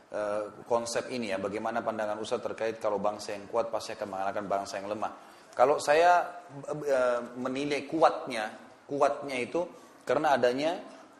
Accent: Indonesian